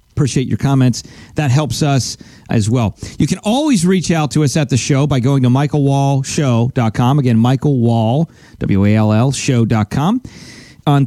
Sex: male